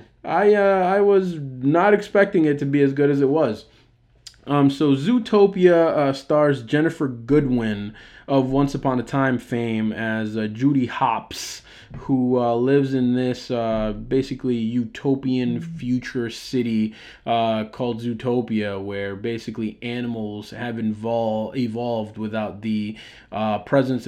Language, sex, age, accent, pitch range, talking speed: English, male, 20-39, American, 110-135 Hz, 135 wpm